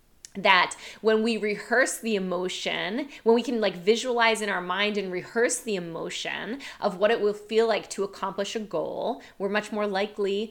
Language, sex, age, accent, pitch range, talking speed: English, female, 20-39, American, 180-230 Hz, 185 wpm